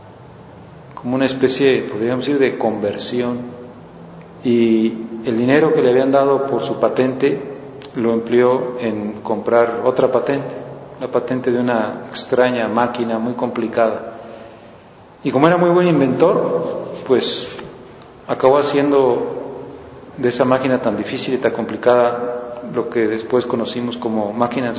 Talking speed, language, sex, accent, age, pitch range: 130 wpm, Spanish, male, Mexican, 40-59, 120-135 Hz